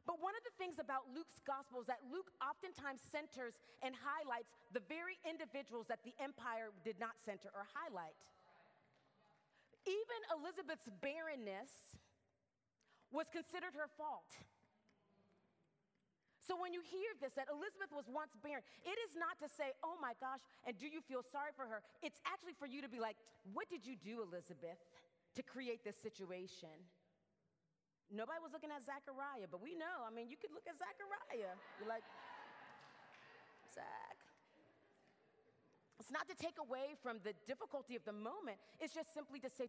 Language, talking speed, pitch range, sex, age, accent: English, 165 wpm, 220-315 Hz, female, 30-49, American